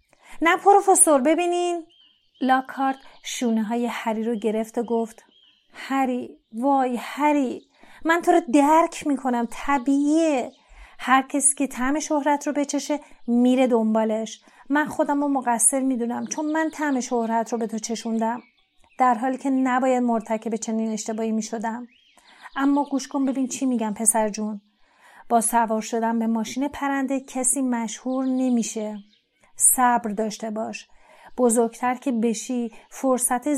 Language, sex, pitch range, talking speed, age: Persian, female, 230-290 Hz, 130 wpm, 30-49